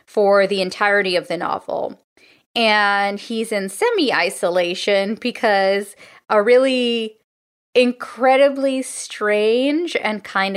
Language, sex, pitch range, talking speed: English, female, 185-255 Hz, 95 wpm